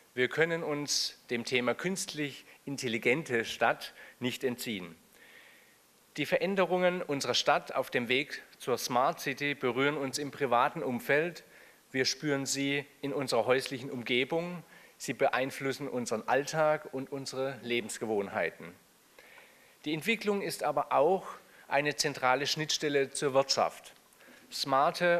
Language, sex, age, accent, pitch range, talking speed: German, male, 40-59, German, 125-155 Hz, 120 wpm